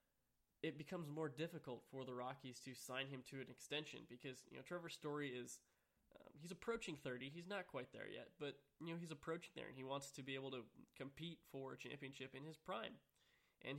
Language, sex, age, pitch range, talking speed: English, male, 20-39, 130-155 Hz, 215 wpm